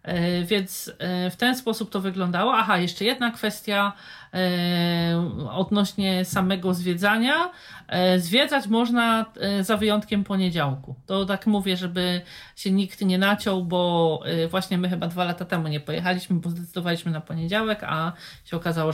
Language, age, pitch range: Polish, 40-59, 170-205 Hz